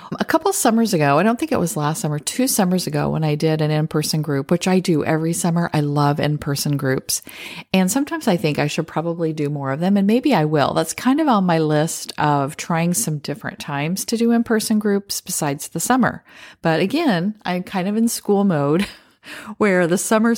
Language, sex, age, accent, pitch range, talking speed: English, female, 40-59, American, 150-200 Hz, 225 wpm